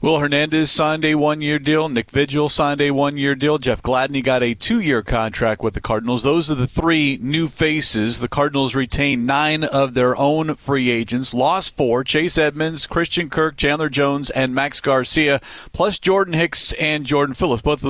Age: 40-59